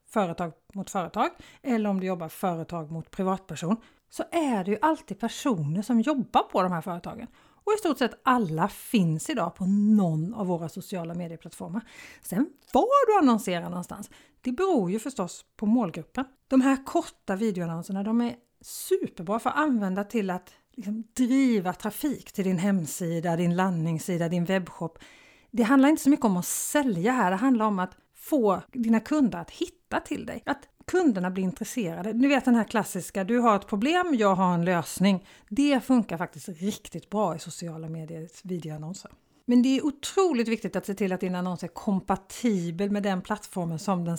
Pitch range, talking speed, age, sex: 180-245 Hz, 180 wpm, 40-59, female